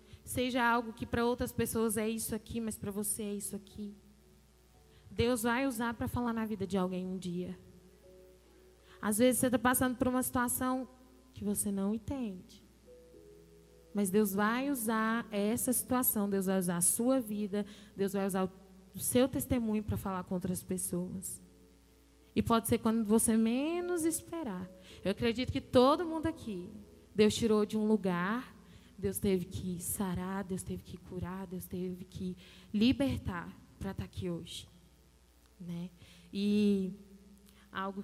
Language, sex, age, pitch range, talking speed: Portuguese, female, 10-29, 180-225 Hz, 155 wpm